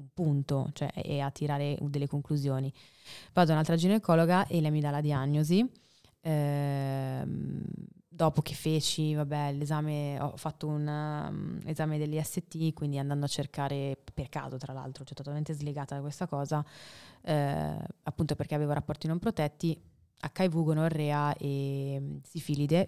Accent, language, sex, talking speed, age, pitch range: native, Italian, female, 145 wpm, 20-39, 145-160 Hz